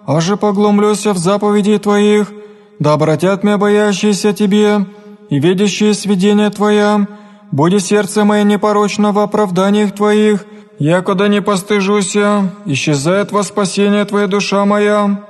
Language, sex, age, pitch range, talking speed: Greek, male, 20-39, 200-210 Hz, 120 wpm